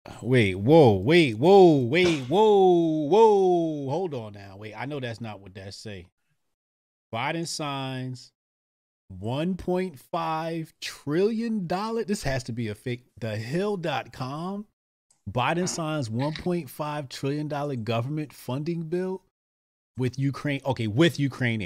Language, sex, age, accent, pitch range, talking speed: English, male, 30-49, American, 100-160 Hz, 115 wpm